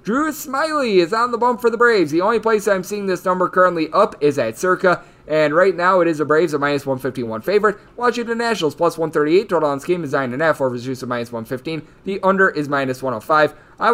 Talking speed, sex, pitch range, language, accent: 230 wpm, male, 155-215 Hz, English, American